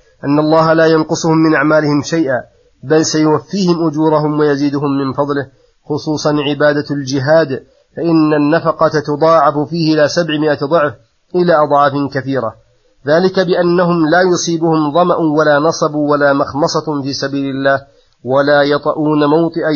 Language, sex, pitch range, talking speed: Arabic, male, 140-160 Hz, 125 wpm